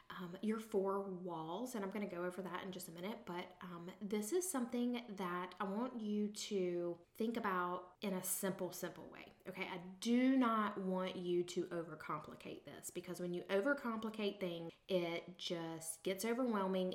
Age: 20-39